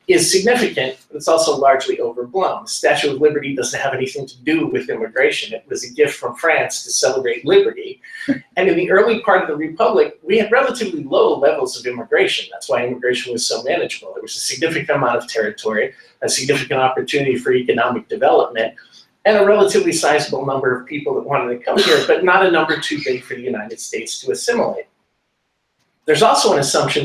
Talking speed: 195 wpm